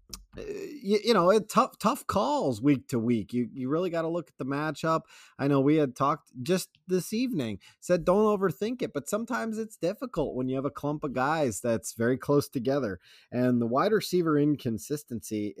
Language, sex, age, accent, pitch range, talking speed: English, male, 30-49, American, 115-160 Hz, 195 wpm